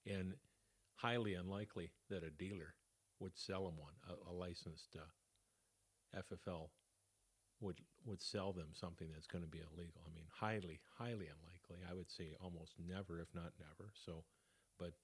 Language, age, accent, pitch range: English, 50-69, American, 90-110 Hz